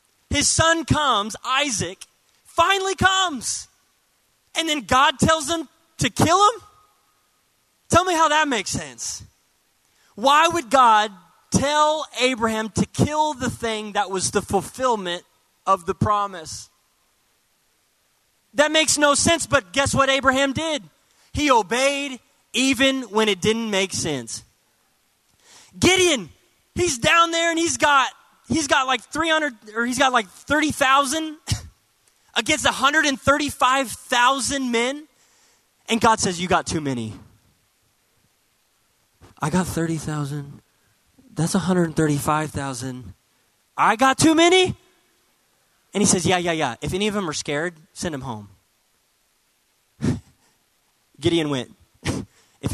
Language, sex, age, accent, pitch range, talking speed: English, male, 20-39, American, 180-295 Hz, 120 wpm